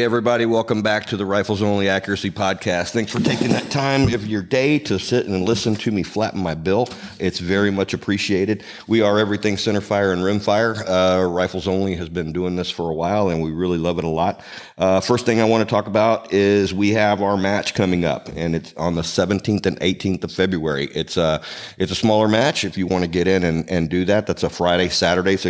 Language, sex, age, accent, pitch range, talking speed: English, male, 50-69, American, 90-110 Hz, 235 wpm